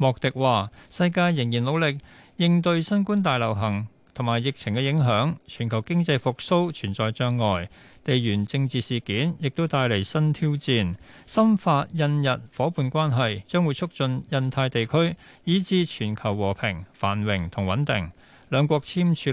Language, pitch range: Chinese, 110-155 Hz